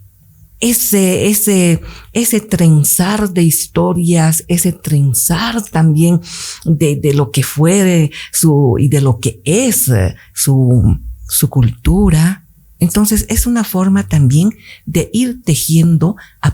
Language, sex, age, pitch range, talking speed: Spanish, female, 50-69, 130-185 Hz, 115 wpm